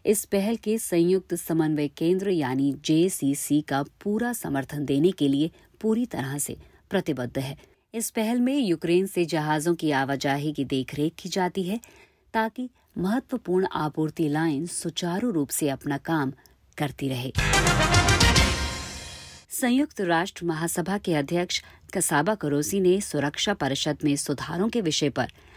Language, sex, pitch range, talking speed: Hindi, female, 140-190 Hz, 135 wpm